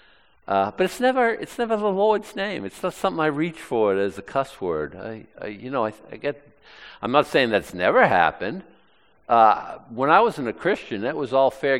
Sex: male